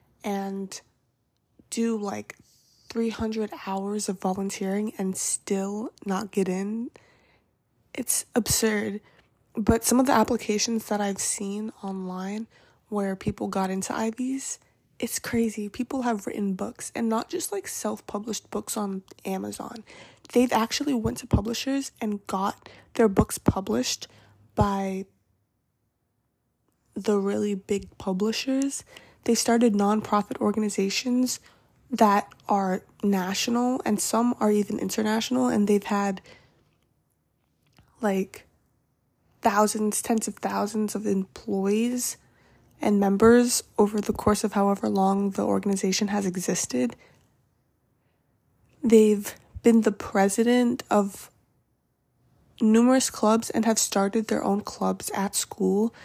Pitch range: 195-230 Hz